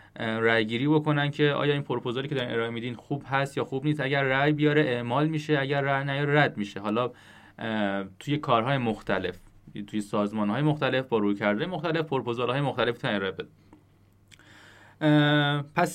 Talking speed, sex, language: 155 wpm, male, Persian